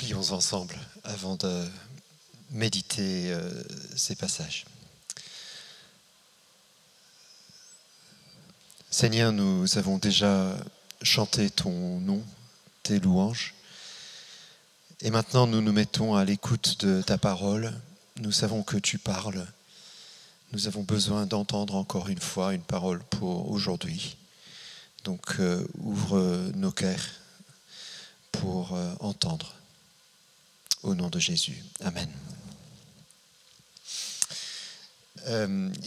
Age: 40-59